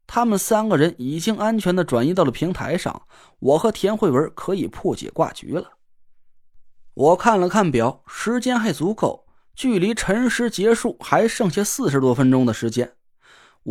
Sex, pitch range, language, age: male, 160-225 Hz, Chinese, 20-39